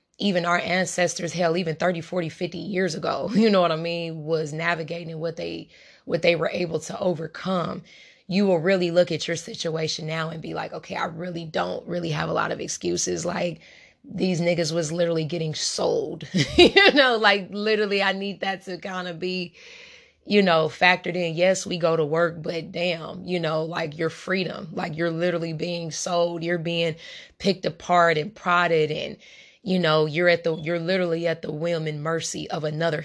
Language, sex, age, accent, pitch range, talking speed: English, female, 20-39, American, 165-190 Hz, 190 wpm